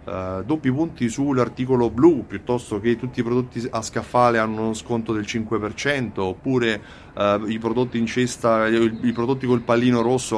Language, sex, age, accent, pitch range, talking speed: Italian, male, 30-49, native, 110-130 Hz, 155 wpm